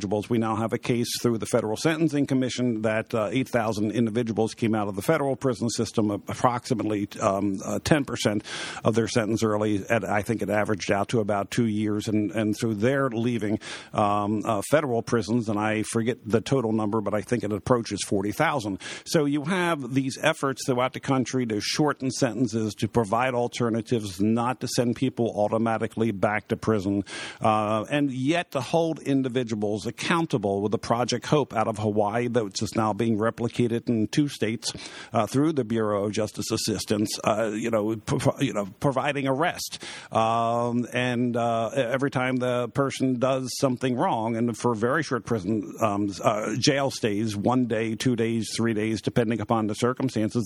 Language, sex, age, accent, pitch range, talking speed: English, male, 50-69, American, 110-130 Hz, 175 wpm